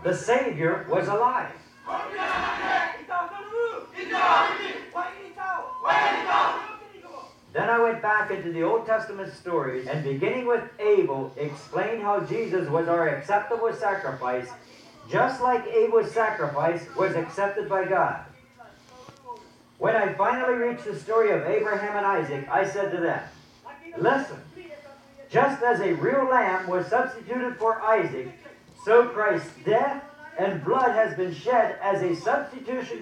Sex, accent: male, American